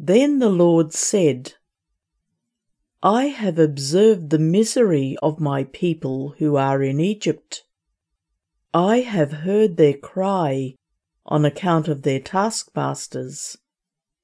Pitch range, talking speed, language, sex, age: 140-195 Hz, 110 wpm, English, female, 50-69